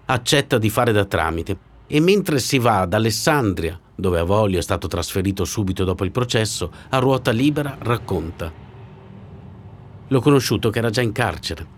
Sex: male